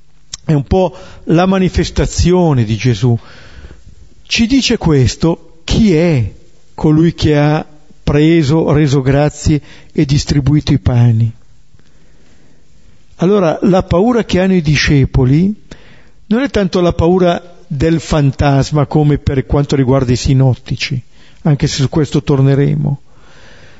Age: 50-69